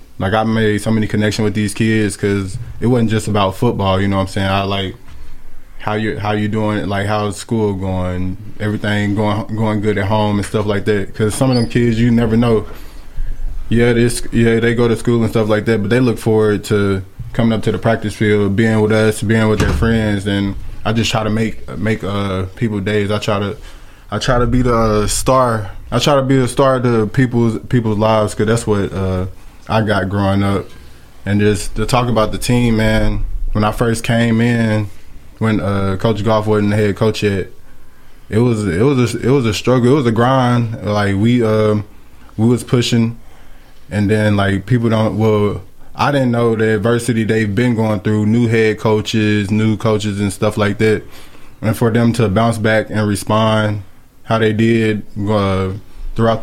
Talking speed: 205 wpm